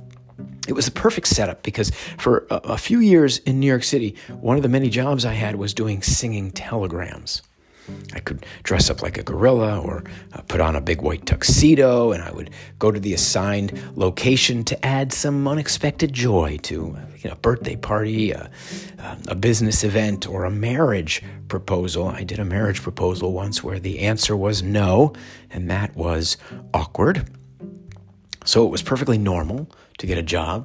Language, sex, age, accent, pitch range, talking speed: English, male, 50-69, American, 90-130 Hz, 175 wpm